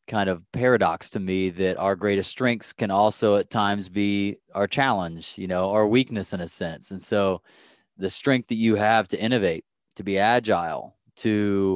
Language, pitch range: English, 95-110 Hz